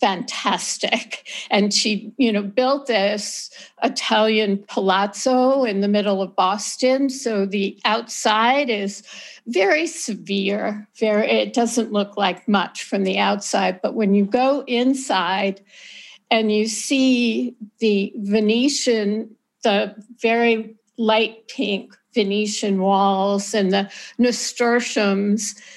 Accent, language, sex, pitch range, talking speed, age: American, English, female, 200-235 Hz, 110 wpm, 60-79